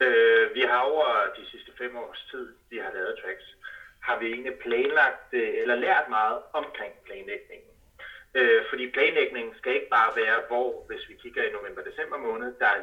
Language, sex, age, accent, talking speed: Danish, male, 30-49, native, 170 wpm